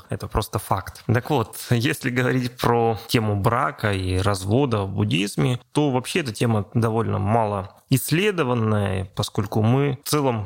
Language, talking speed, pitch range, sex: Russian, 145 wpm, 110-130 Hz, male